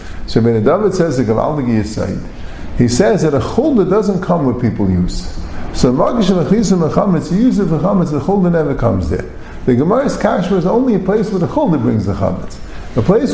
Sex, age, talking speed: male, 50-69, 185 wpm